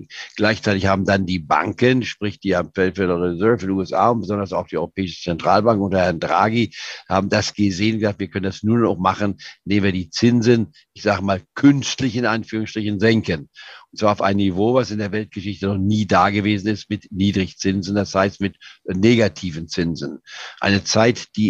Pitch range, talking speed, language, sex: 100-120 Hz, 180 wpm, German, male